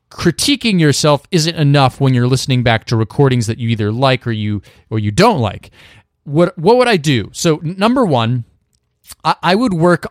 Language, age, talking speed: English, 30-49, 190 wpm